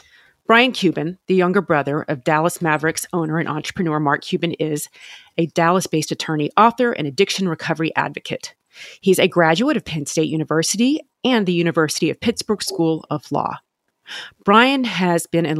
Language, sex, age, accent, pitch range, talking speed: English, female, 40-59, American, 155-195 Hz, 160 wpm